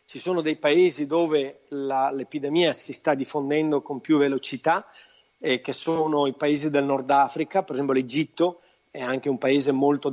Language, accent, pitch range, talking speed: Italian, native, 140-170 Hz, 170 wpm